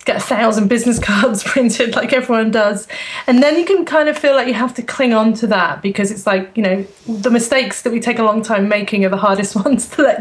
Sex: female